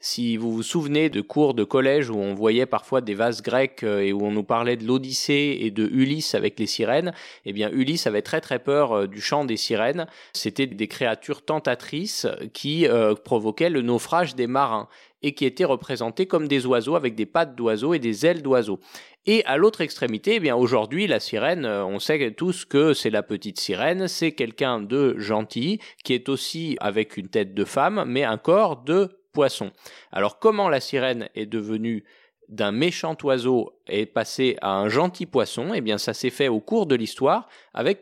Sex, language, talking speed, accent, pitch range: male, French, 195 wpm, French, 110-155 Hz